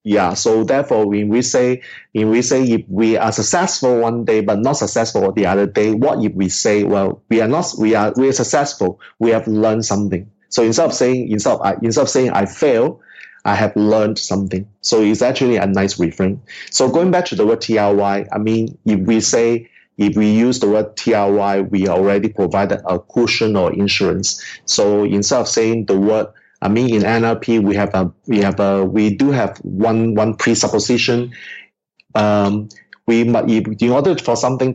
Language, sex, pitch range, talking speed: English, male, 100-120 Hz, 195 wpm